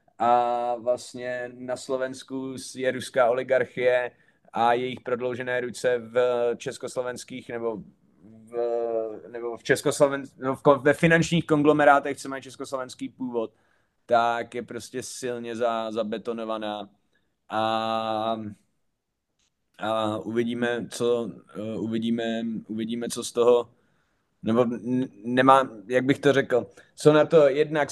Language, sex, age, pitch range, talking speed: Slovak, male, 30-49, 120-140 Hz, 115 wpm